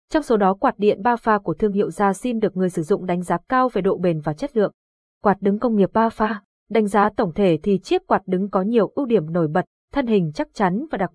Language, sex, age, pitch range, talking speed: Vietnamese, female, 20-39, 185-235 Hz, 275 wpm